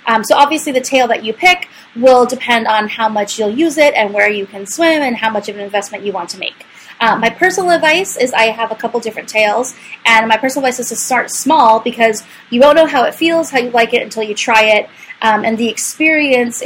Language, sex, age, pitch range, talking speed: English, female, 20-39, 205-250 Hz, 250 wpm